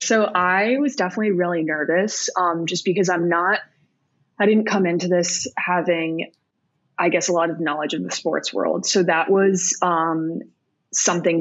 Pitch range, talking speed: 160-185 Hz, 170 wpm